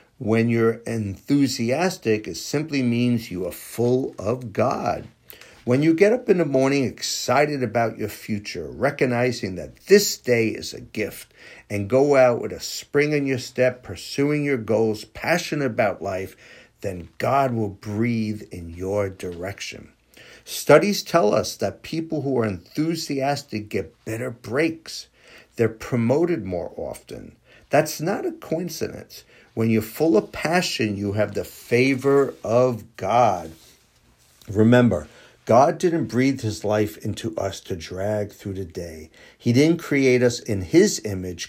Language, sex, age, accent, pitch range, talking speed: English, male, 50-69, American, 105-135 Hz, 145 wpm